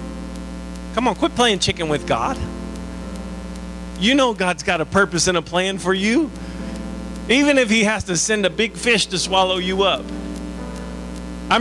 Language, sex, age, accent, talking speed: English, male, 40-59, American, 165 wpm